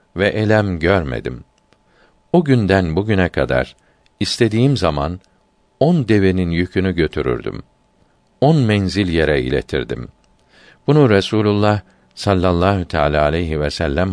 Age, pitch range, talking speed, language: 50-69, 85-120 Hz, 100 wpm, Turkish